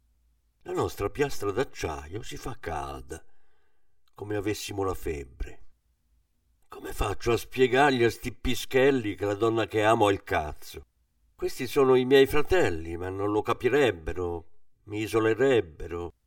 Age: 50-69